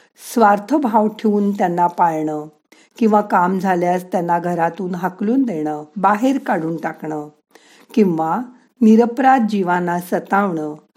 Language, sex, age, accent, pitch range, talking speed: Marathi, female, 50-69, native, 170-225 Hz, 105 wpm